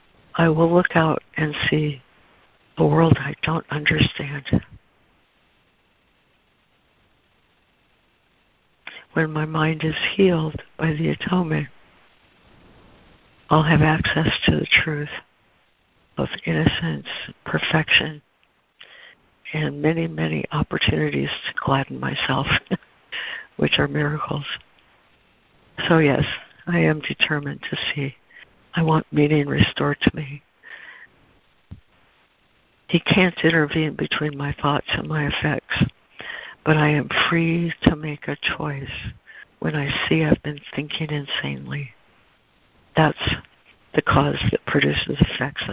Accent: American